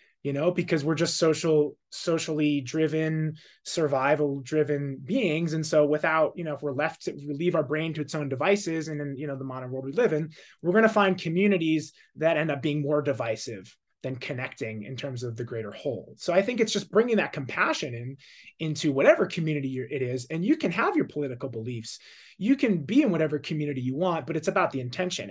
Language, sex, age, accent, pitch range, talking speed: English, male, 20-39, American, 140-185 Hz, 210 wpm